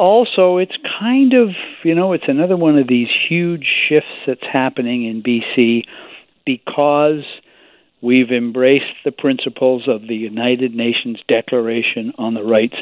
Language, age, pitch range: English, 60-79, 120-150 Hz